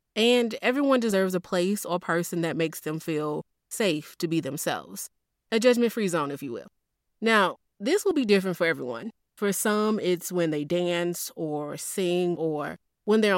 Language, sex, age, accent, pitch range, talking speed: English, female, 20-39, American, 160-195 Hz, 175 wpm